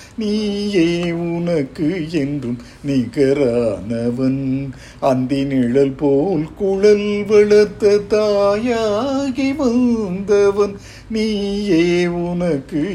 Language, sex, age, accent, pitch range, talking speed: Tamil, male, 50-69, native, 145-210 Hz, 60 wpm